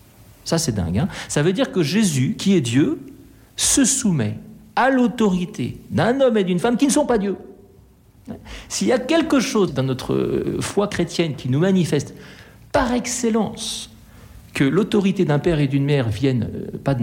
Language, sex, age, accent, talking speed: French, male, 60-79, French, 175 wpm